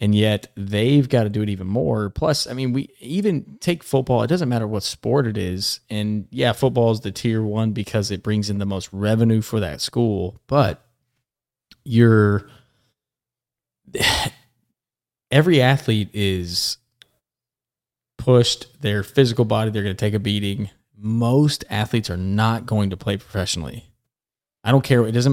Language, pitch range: English, 105-125 Hz